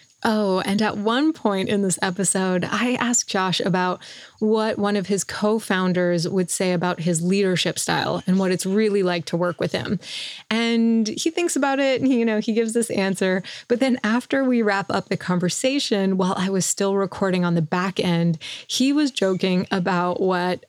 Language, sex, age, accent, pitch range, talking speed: English, female, 20-39, American, 180-220 Hz, 190 wpm